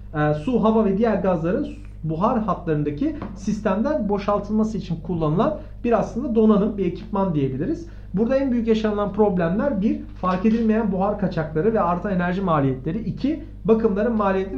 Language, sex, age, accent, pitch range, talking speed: Turkish, male, 40-59, native, 155-220 Hz, 140 wpm